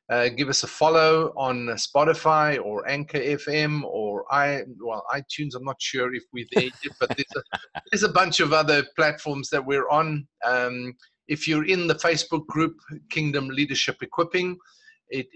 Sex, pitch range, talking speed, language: male, 130-160 Hz, 170 wpm, English